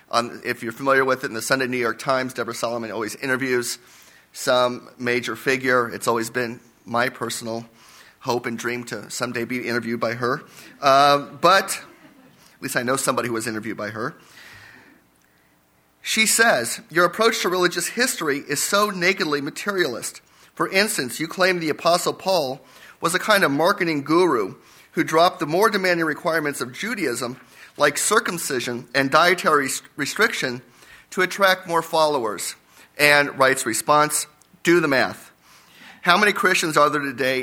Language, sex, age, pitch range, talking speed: English, male, 30-49, 125-165 Hz, 155 wpm